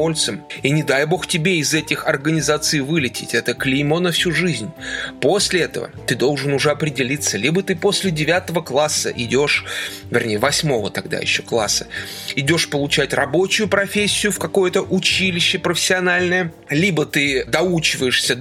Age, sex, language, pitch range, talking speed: 30-49, male, Russian, 135-185 Hz, 135 wpm